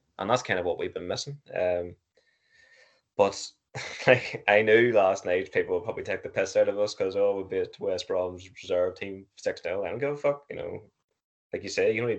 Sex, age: male, 10-29